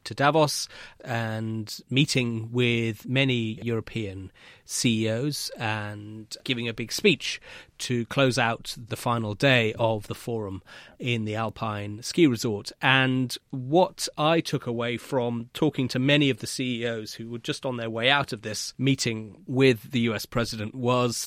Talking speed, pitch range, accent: 150 wpm, 115-135 Hz, British